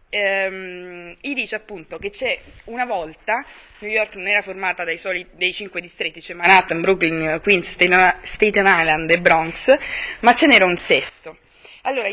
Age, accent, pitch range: 20-39, native, 185-245 Hz